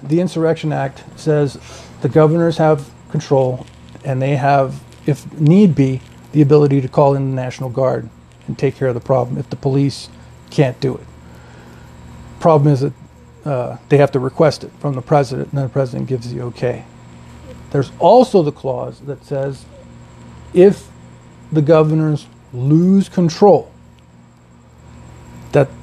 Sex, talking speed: male, 150 wpm